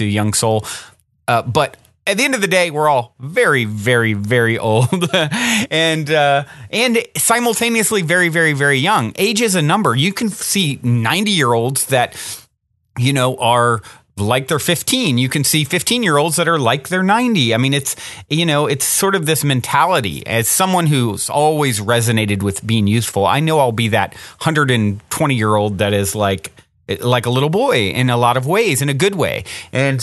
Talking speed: 190 wpm